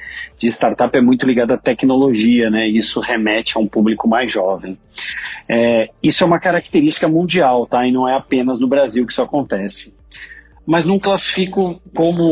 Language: Portuguese